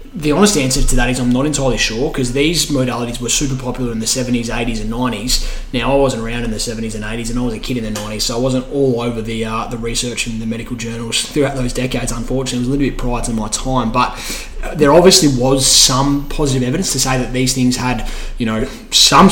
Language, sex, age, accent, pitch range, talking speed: English, male, 20-39, Australian, 115-130 Hz, 250 wpm